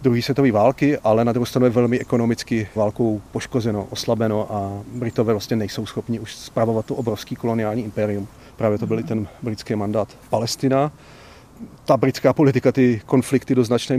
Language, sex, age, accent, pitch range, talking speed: Czech, male, 40-59, native, 115-135 Hz, 165 wpm